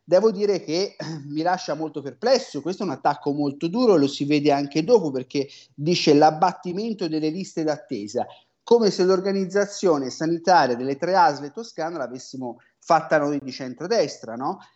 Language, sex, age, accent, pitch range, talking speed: Italian, male, 30-49, native, 145-190 Hz, 155 wpm